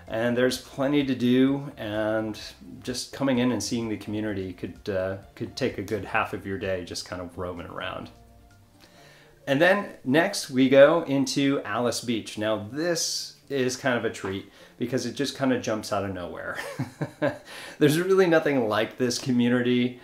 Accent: American